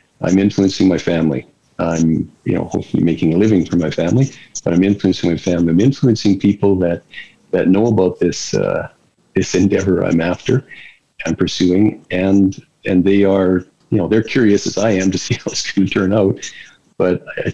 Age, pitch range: 50-69, 90-100 Hz